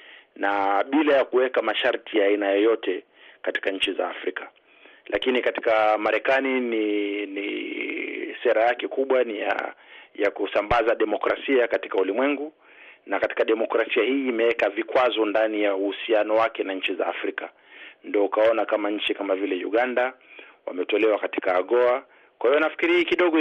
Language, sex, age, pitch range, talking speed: Swahili, male, 40-59, 105-140 Hz, 140 wpm